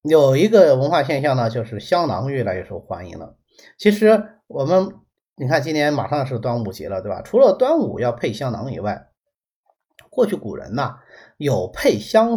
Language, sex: Chinese, male